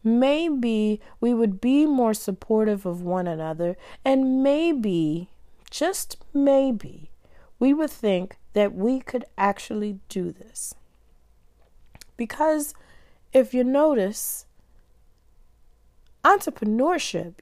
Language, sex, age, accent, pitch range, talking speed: English, female, 40-59, American, 190-265 Hz, 95 wpm